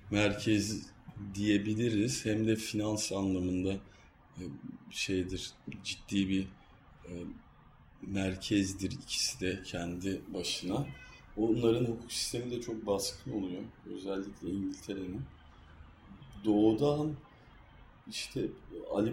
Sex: male